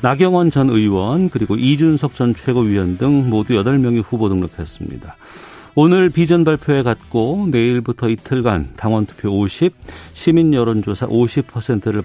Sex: male